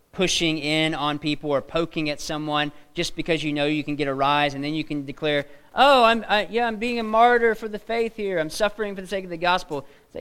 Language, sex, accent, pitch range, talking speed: English, male, American, 150-200 Hz, 255 wpm